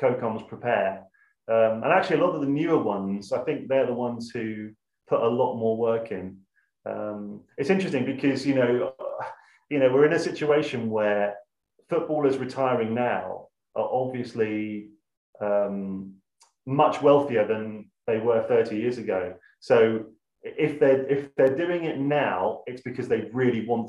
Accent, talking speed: British, 160 wpm